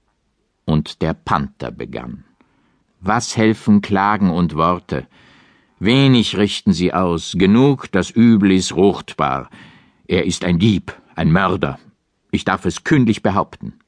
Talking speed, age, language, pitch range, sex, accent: 125 wpm, 60-79, German, 90-125 Hz, male, German